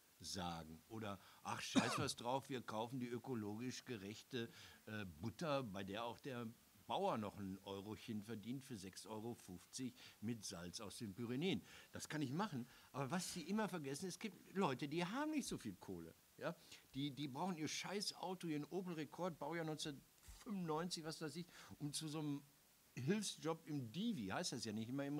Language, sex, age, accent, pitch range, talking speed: German, male, 60-79, German, 115-160 Hz, 175 wpm